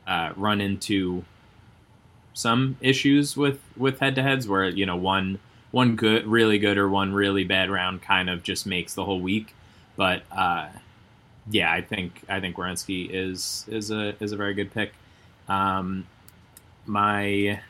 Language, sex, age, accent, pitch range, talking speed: English, male, 20-39, American, 95-110 Hz, 155 wpm